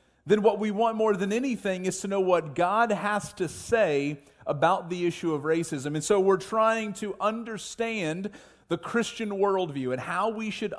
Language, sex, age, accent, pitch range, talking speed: English, male, 40-59, American, 165-205 Hz, 185 wpm